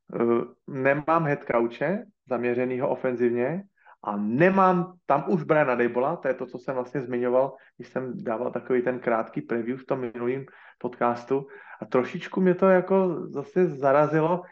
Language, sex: Slovak, male